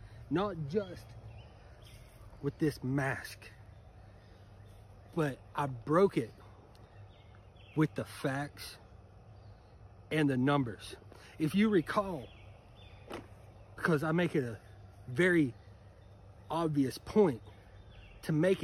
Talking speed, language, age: 90 wpm, English, 30-49